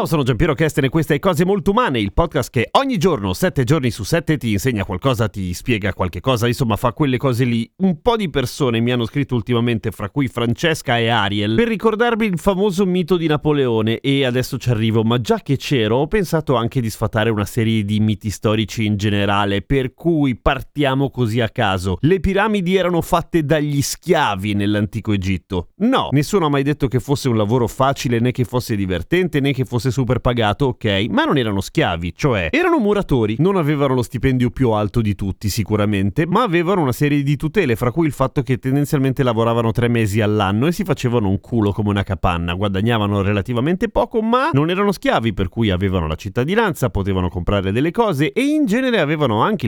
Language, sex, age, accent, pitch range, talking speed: Italian, male, 30-49, native, 110-160 Hz, 200 wpm